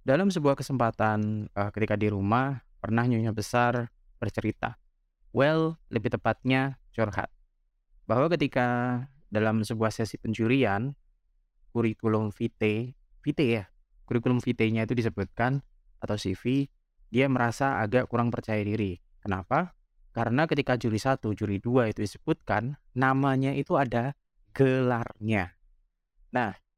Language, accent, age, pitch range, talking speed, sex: Indonesian, native, 20-39, 105-135 Hz, 115 wpm, male